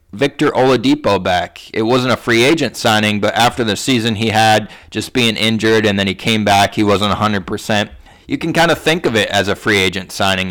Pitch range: 105-120 Hz